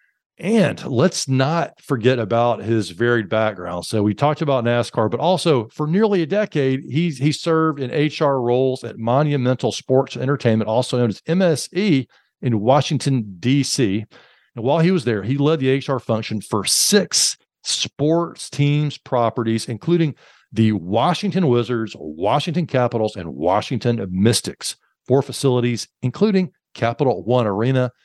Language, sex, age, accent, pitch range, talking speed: English, male, 40-59, American, 120-165 Hz, 140 wpm